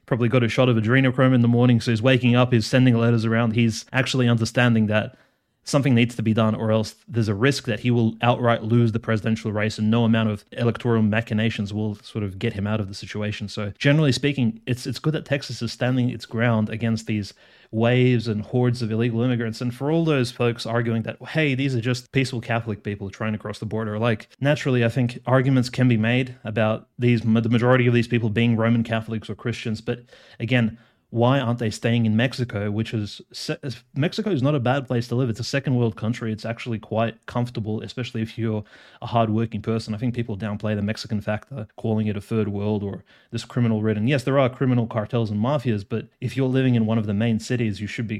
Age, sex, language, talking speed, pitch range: 30-49, male, English, 225 wpm, 110-125 Hz